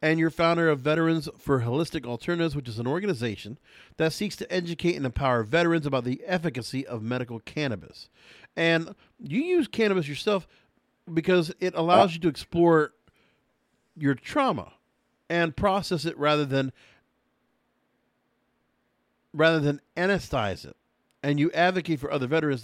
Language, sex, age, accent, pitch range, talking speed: English, male, 50-69, American, 130-170 Hz, 140 wpm